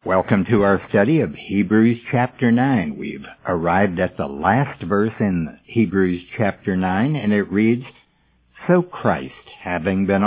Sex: male